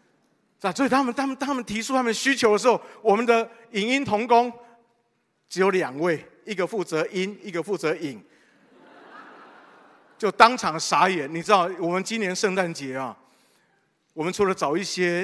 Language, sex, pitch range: Chinese, male, 170-235 Hz